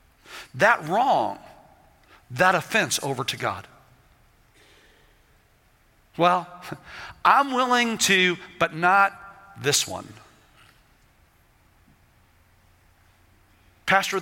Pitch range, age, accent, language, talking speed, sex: 110-180 Hz, 50-69, American, English, 70 wpm, male